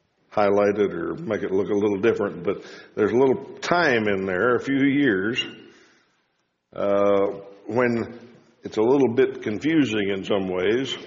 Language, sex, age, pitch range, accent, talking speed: English, male, 60-79, 105-135 Hz, American, 155 wpm